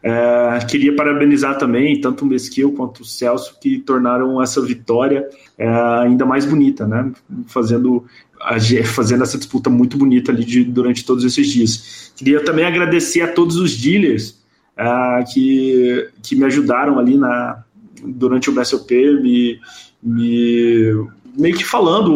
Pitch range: 120-150 Hz